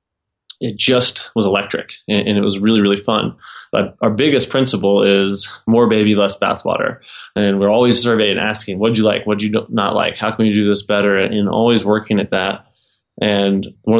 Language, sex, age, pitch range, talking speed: English, male, 20-39, 100-110 Hz, 200 wpm